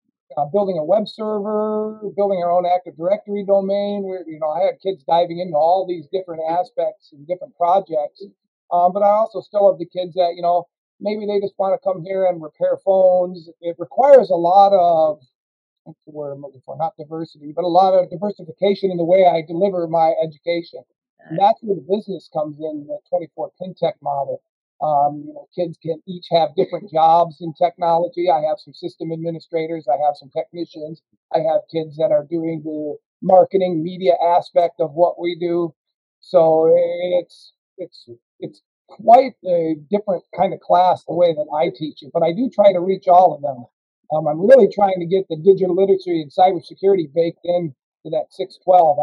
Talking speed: 195 wpm